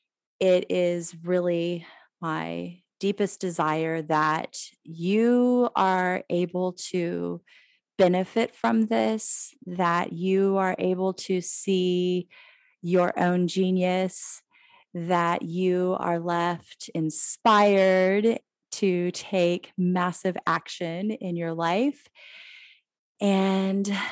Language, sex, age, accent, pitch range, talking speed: English, female, 30-49, American, 170-215 Hz, 90 wpm